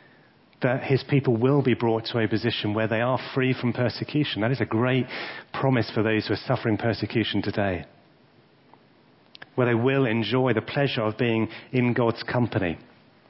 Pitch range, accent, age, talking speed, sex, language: 105-125 Hz, British, 40-59, 170 wpm, male, English